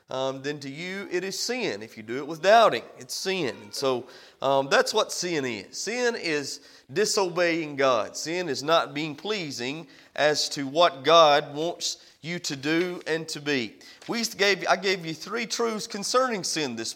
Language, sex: English, male